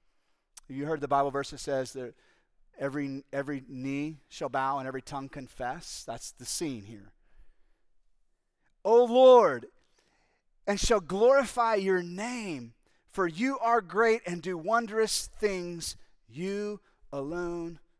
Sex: male